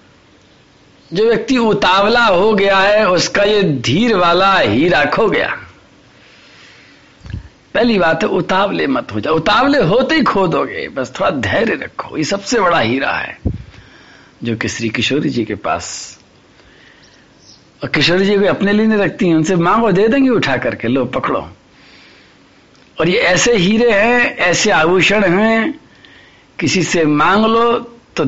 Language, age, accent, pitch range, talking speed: Hindi, 60-79, native, 155-225 Hz, 150 wpm